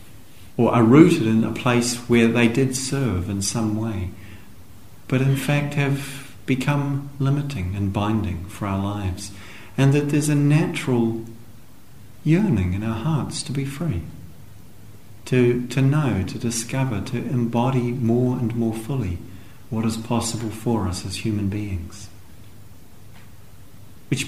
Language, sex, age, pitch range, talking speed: English, male, 50-69, 105-130 Hz, 140 wpm